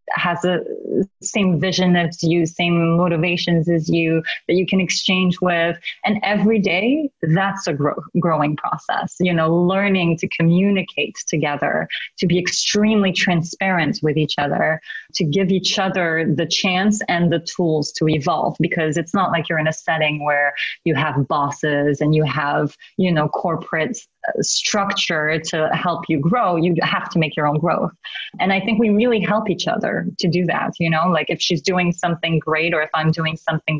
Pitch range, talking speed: 160-185 Hz, 180 wpm